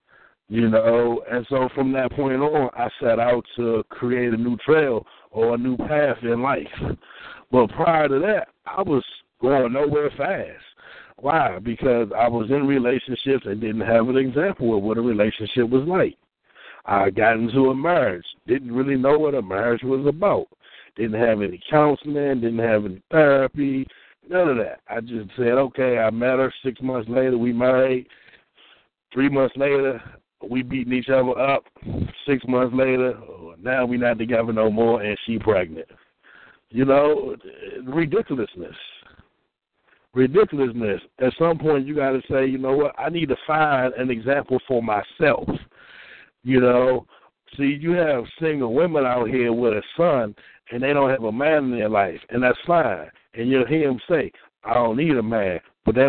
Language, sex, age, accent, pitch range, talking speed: English, male, 60-79, American, 120-140 Hz, 175 wpm